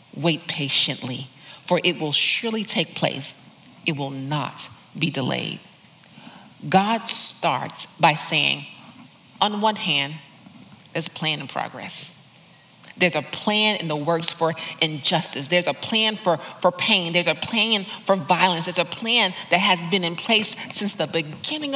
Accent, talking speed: American, 150 wpm